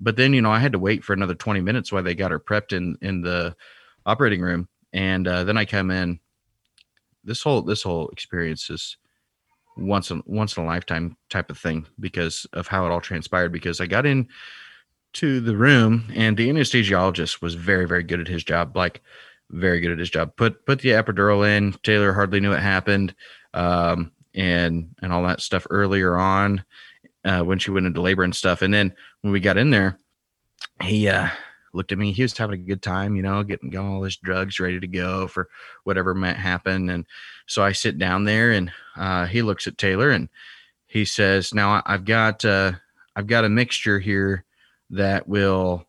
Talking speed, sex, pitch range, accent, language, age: 205 wpm, male, 90-100 Hz, American, English, 30-49